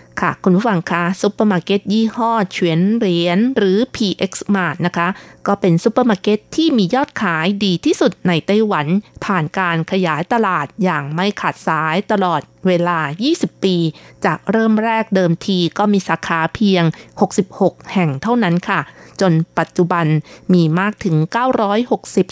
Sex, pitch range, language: female, 170-215 Hz, Thai